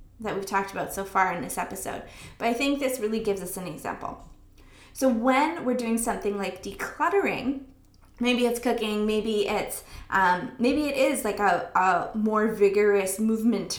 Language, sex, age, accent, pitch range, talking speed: English, female, 20-39, American, 215-280 Hz, 175 wpm